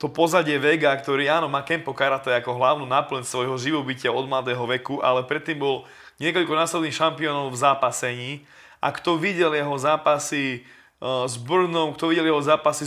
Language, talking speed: Slovak, 165 wpm